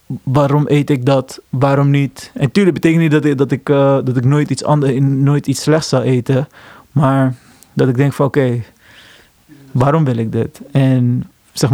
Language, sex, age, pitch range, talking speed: Dutch, male, 20-39, 135-170 Hz, 155 wpm